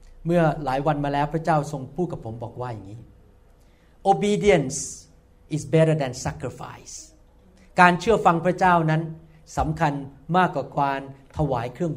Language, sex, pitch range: Thai, male, 135-175 Hz